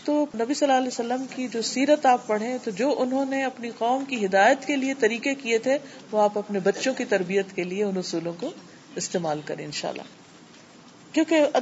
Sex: female